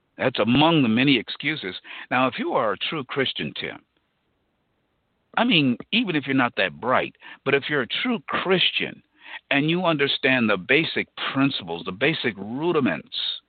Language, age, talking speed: English, 50-69, 160 wpm